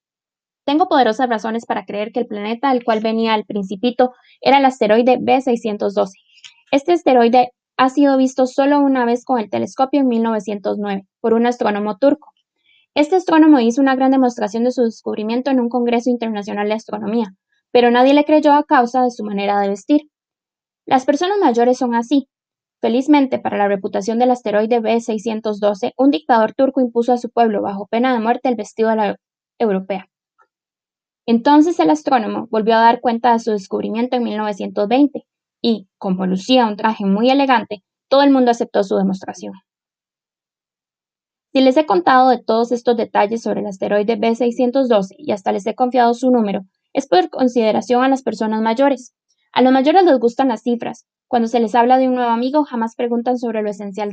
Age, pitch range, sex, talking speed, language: 20-39, 220-265 Hz, female, 175 wpm, Spanish